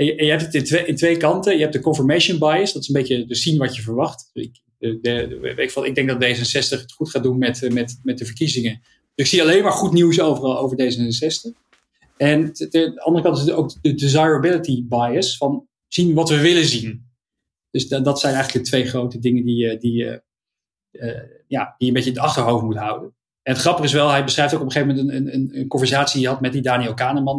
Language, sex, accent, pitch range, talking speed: Dutch, male, Dutch, 125-160 Hz, 245 wpm